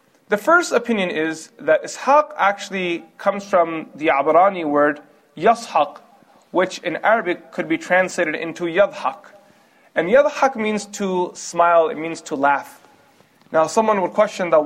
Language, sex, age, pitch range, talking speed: English, male, 30-49, 160-215 Hz, 145 wpm